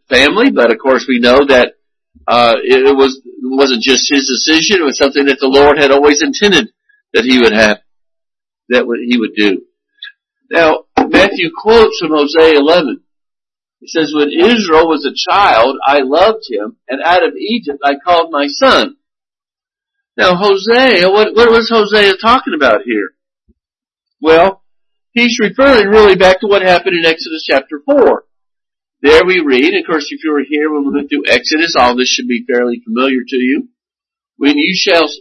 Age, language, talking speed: 50-69, English, 170 wpm